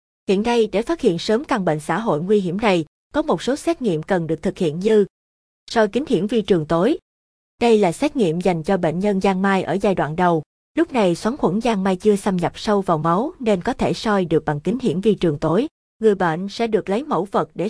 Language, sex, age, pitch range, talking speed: Vietnamese, female, 20-39, 175-225 Hz, 250 wpm